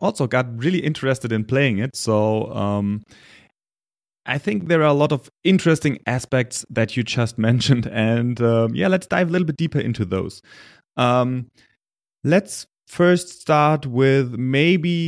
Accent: German